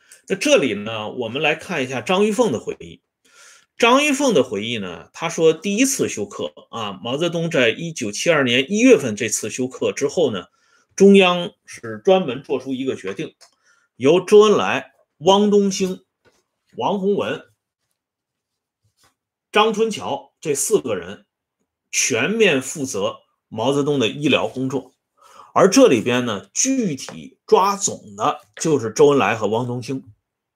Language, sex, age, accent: Swedish, male, 30-49, Chinese